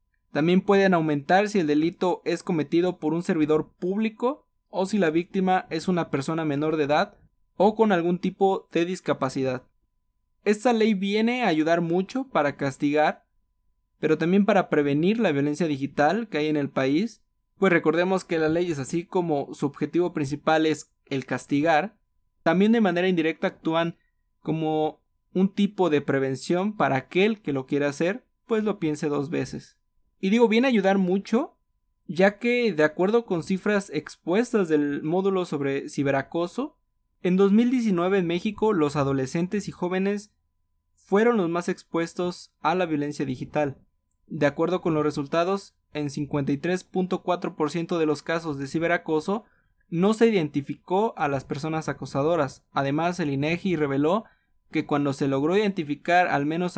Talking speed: 155 wpm